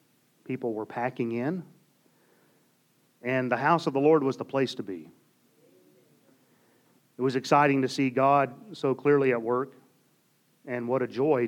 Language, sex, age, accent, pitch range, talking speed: English, male, 40-59, American, 115-165 Hz, 150 wpm